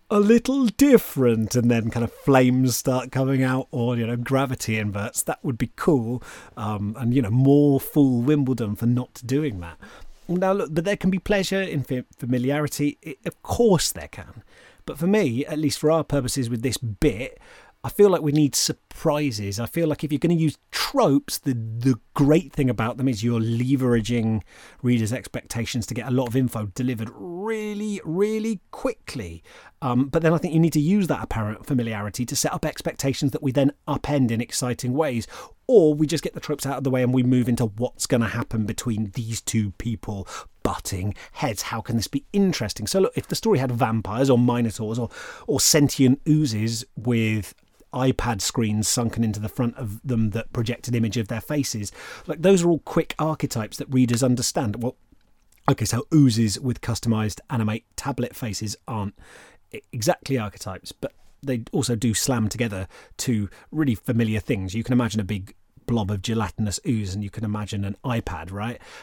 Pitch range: 110-145 Hz